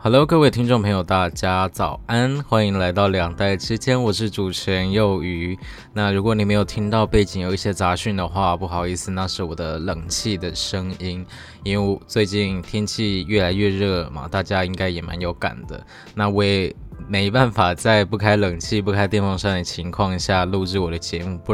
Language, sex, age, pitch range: Chinese, male, 20-39, 90-105 Hz